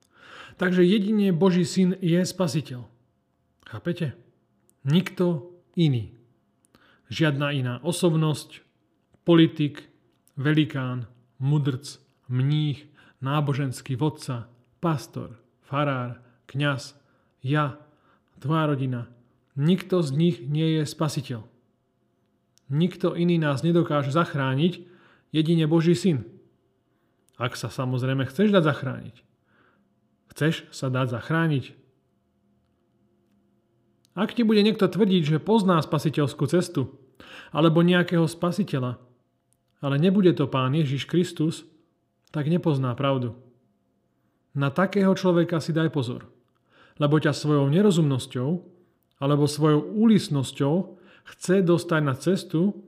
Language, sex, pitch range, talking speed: Slovak, male, 130-175 Hz, 100 wpm